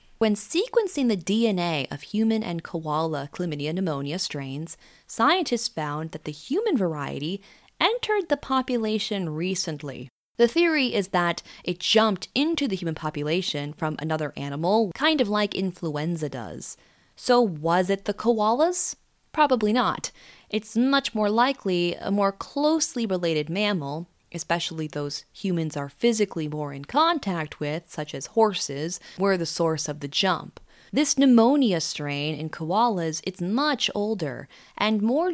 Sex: female